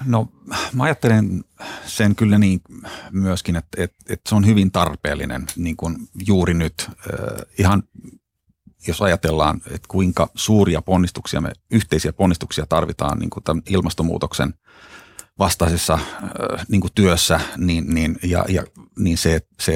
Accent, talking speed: native, 130 wpm